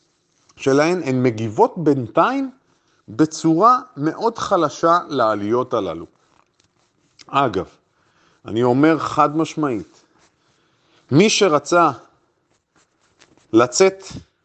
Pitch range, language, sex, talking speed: 135-185 Hz, Hebrew, male, 70 wpm